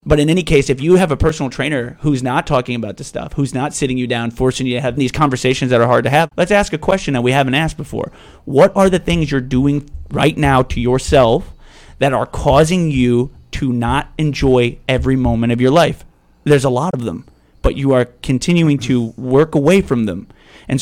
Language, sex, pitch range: English, male, 125-145 Hz